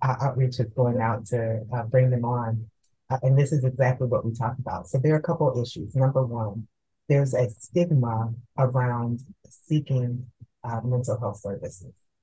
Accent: American